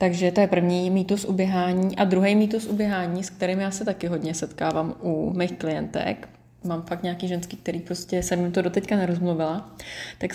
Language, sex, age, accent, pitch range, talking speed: Czech, female, 20-39, native, 165-185 Hz, 185 wpm